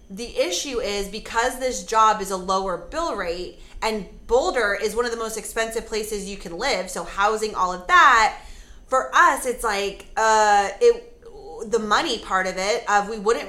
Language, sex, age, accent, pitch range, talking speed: English, female, 20-39, American, 200-250 Hz, 190 wpm